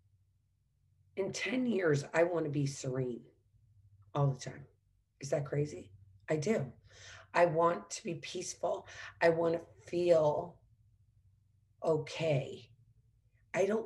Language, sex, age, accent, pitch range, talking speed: English, female, 40-59, American, 115-165 Hz, 120 wpm